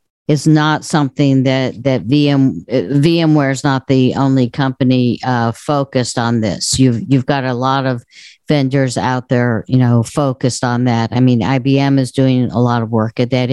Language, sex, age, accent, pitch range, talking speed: English, female, 50-69, American, 125-150 Hz, 185 wpm